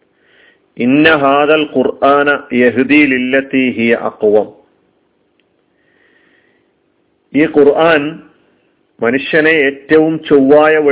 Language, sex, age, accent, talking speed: Malayalam, male, 40-59, native, 60 wpm